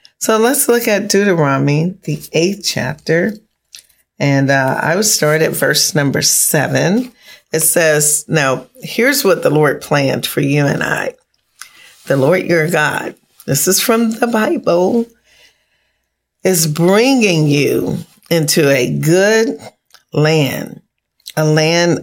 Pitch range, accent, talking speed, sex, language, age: 150-195 Hz, American, 130 wpm, female, English, 50-69